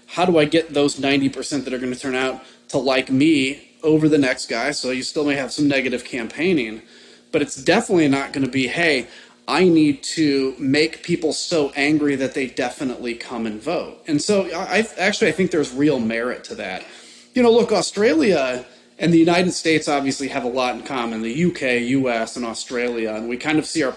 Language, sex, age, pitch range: English, male, 30-49, 125-155 Hz